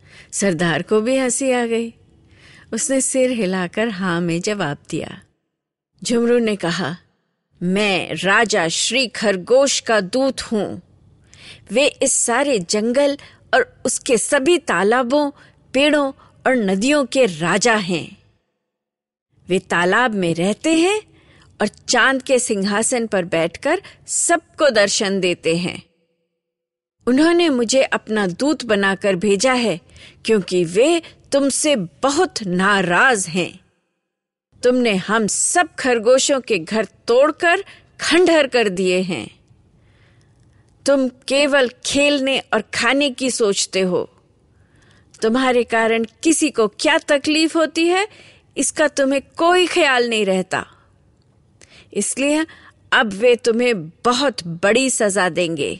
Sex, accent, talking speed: female, native, 115 wpm